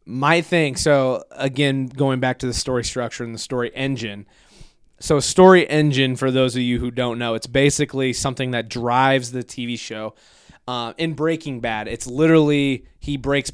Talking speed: 175 wpm